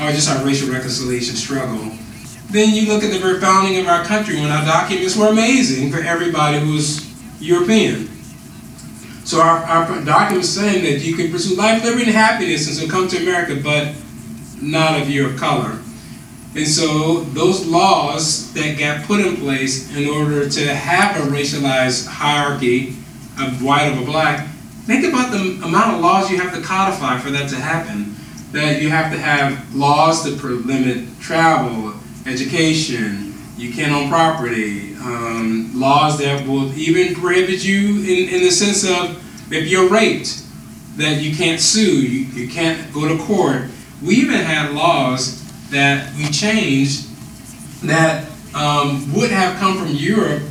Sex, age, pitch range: male, 40-59, 140-180 Hz